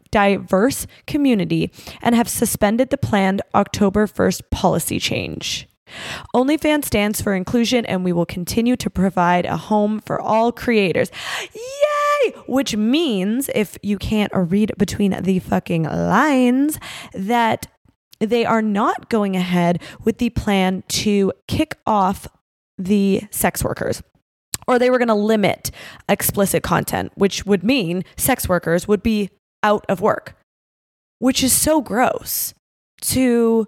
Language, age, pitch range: English, 20-39, 190-245 Hz